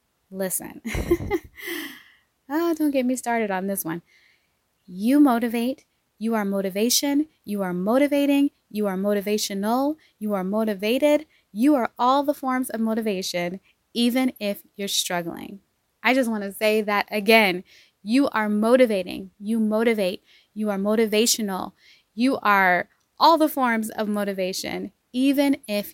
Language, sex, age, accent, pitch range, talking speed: English, female, 20-39, American, 200-270 Hz, 135 wpm